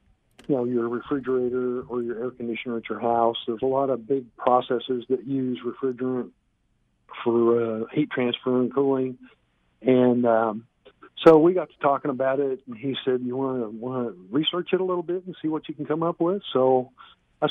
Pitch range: 120-140 Hz